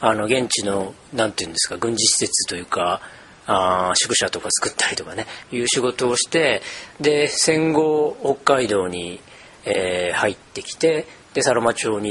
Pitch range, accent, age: 110-155 Hz, native, 40-59